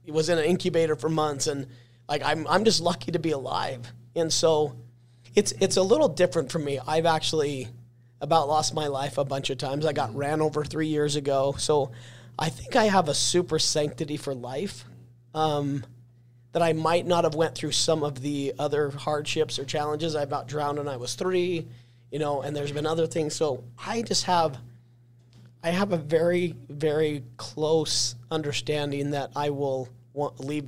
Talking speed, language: 185 wpm, English